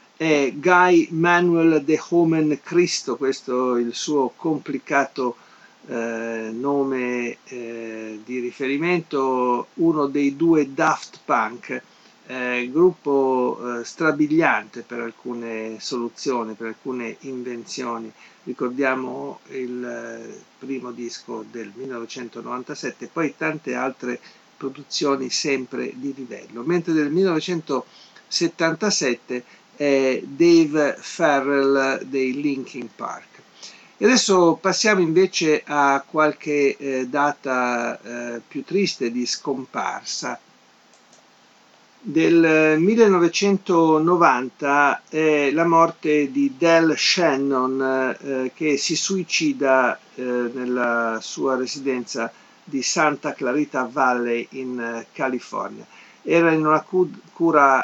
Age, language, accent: 50-69, Italian, native